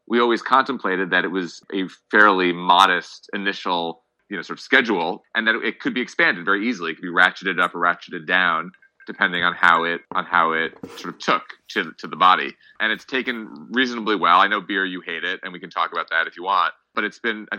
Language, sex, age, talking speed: English, male, 30-49, 235 wpm